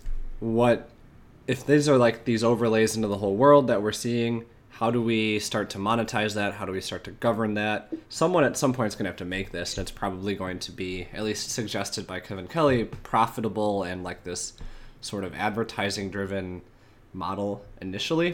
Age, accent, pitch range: 20-39, American, 95-115 Hz